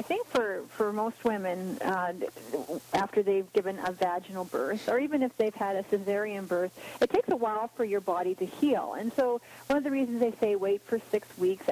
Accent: American